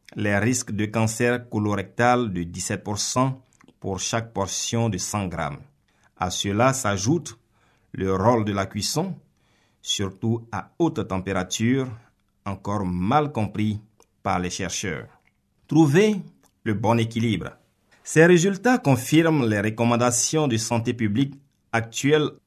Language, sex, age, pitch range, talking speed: French, male, 50-69, 105-135 Hz, 120 wpm